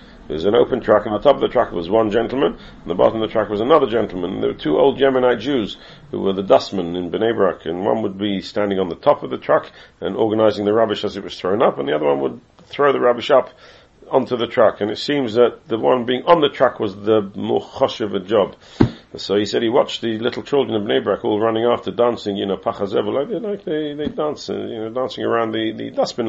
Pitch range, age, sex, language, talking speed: 100-125 Hz, 50-69, male, English, 265 wpm